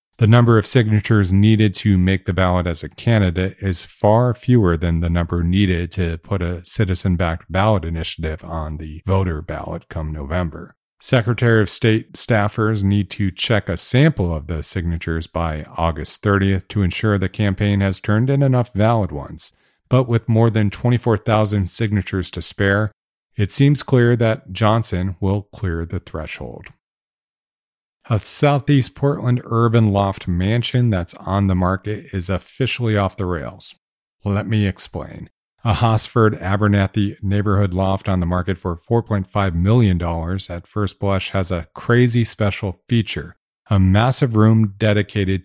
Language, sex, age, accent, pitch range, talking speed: English, male, 40-59, American, 90-110 Hz, 150 wpm